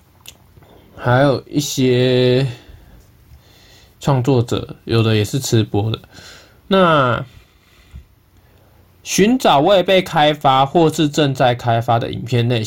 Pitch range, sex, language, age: 110-145 Hz, male, Chinese, 20-39